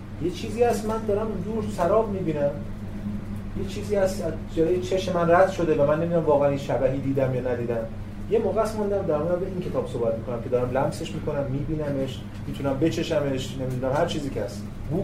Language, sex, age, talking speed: Persian, male, 30-49, 190 wpm